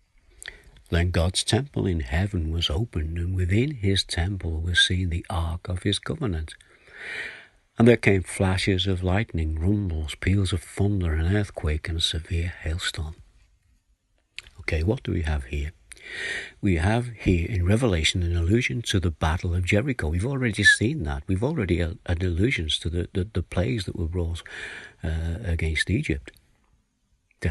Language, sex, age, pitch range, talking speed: English, male, 60-79, 80-100 Hz, 155 wpm